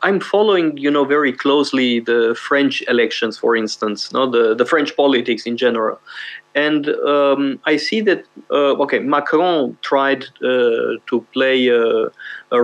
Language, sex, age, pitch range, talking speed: Romanian, male, 30-49, 125-165 Hz, 150 wpm